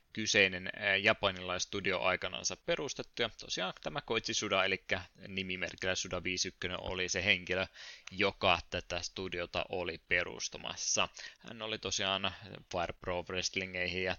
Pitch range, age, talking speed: 95-105 Hz, 20-39, 115 wpm